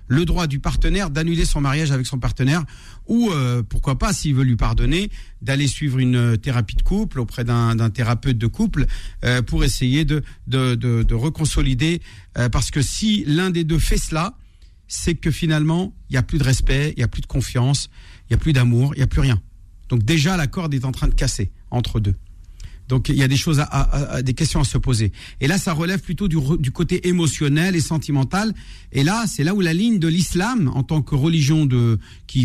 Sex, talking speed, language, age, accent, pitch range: male, 225 wpm, French, 50-69, French, 125-170 Hz